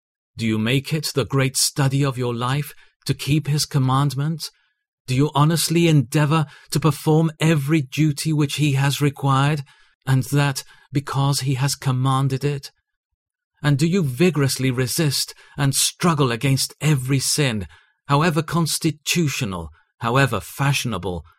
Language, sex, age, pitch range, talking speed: English, male, 40-59, 115-150 Hz, 130 wpm